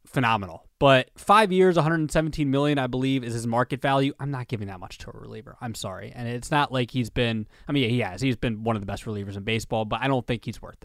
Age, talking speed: 20-39, 260 wpm